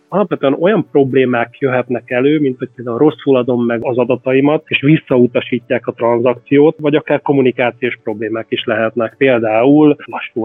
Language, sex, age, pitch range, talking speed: Hungarian, male, 30-49, 120-145 Hz, 145 wpm